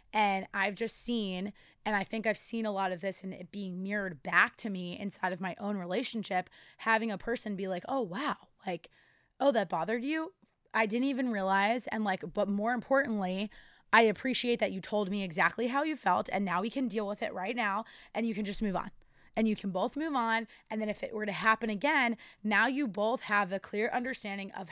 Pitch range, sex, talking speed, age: 190-230 Hz, female, 225 wpm, 20-39